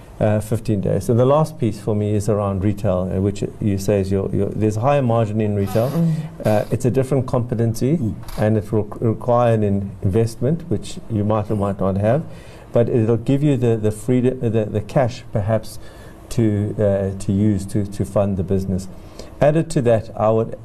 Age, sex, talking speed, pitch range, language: 60-79, male, 200 wpm, 100-120 Hz, English